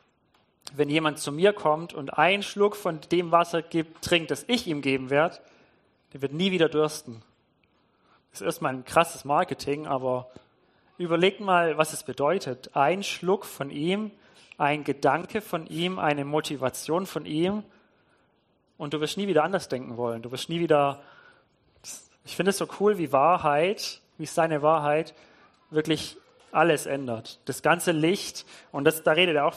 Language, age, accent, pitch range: German, 30-49, German, 135-170 Hz